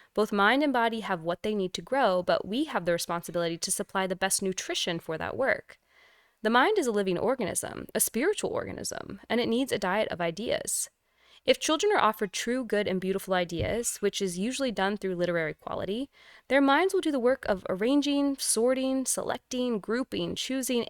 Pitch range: 190-260 Hz